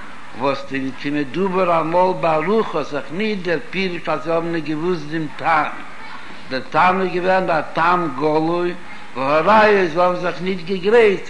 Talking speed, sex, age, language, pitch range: 115 wpm, male, 70-89, Hebrew, 165-205 Hz